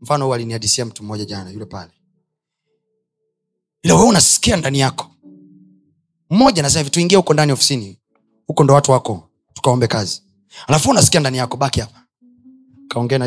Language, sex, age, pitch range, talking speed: Swahili, male, 30-49, 110-155 Hz, 130 wpm